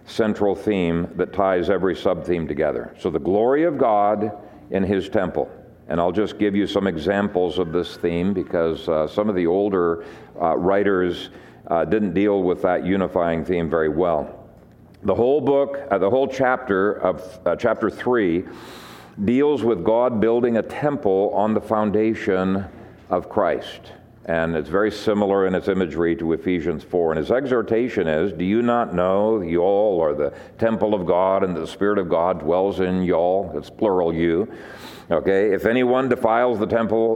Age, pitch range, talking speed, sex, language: 50-69, 90-115 Hz, 175 wpm, male, English